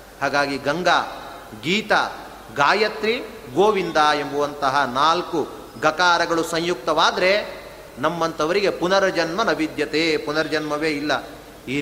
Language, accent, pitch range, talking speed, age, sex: Kannada, native, 145-200 Hz, 75 wpm, 30-49, male